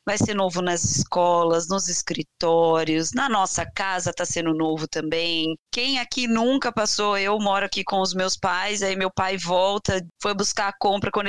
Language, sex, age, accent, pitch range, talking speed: Portuguese, female, 20-39, Brazilian, 180-230 Hz, 180 wpm